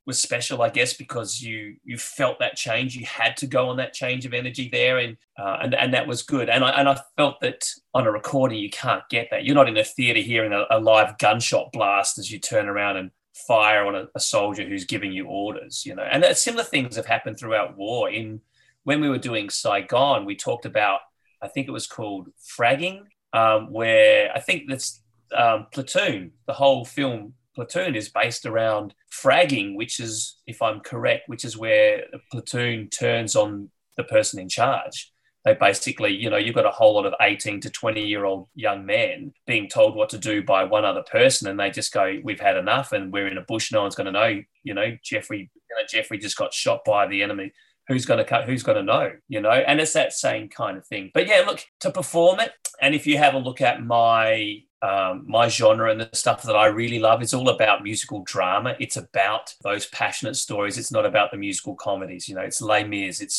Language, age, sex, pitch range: English, 30-49, male, 110-140 Hz